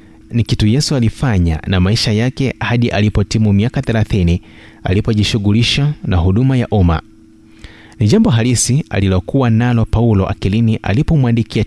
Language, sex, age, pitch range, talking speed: Swahili, male, 30-49, 95-125 Hz, 125 wpm